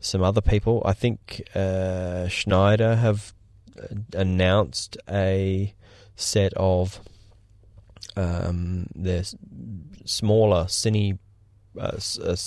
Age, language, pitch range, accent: 20-39, English, 95-105 Hz, Australian